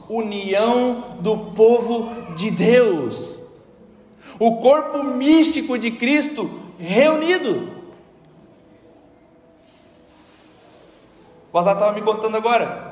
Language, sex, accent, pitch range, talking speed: Portuguese, male, Brazilian, 165-225 Hz, 80 wpm